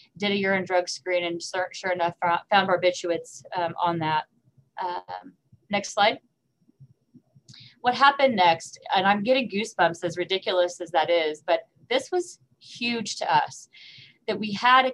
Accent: American